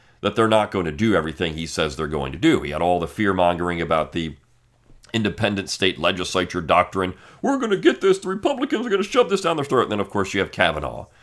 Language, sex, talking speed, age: English, male, 245 wpm, 40-59